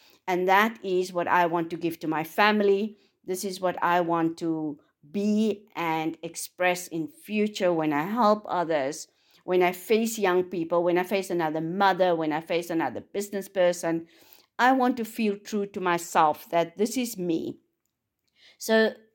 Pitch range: 165-210 Hz